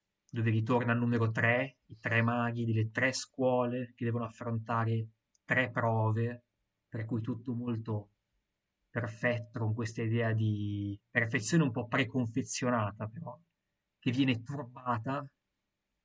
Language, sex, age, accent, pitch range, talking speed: Italian, male, 20-39, native, 110-120 Hz, 125 wpm